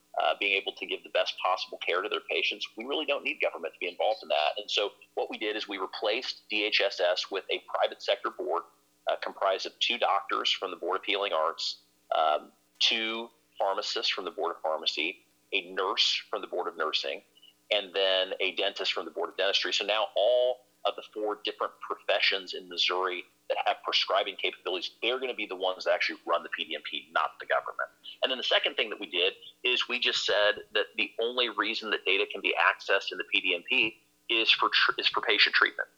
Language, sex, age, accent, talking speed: English, male, 40-59, American, 215 wpm